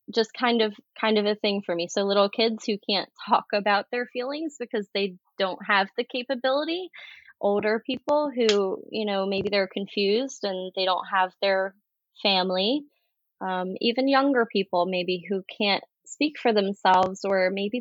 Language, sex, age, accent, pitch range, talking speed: English, female, 20-39, American, 195-230 Hz, 170 wpm